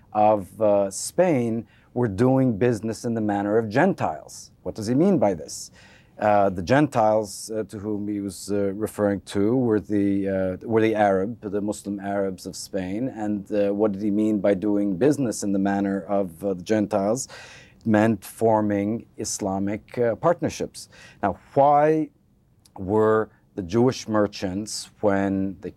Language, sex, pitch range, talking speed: English, male, 100-110 Hz, 160 wpm